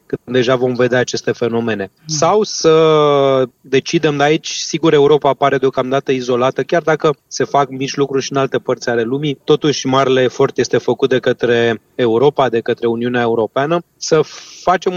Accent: native